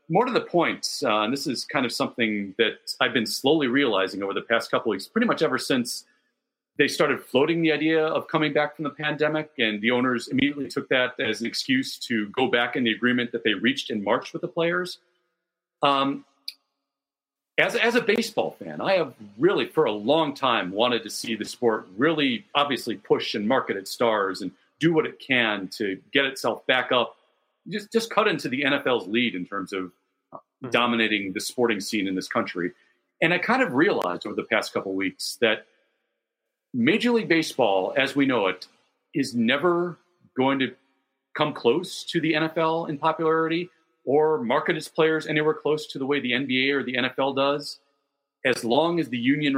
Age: 40-59